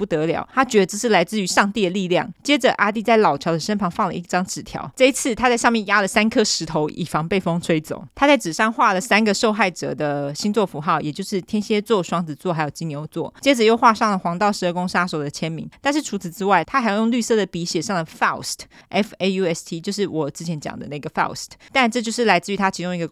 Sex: female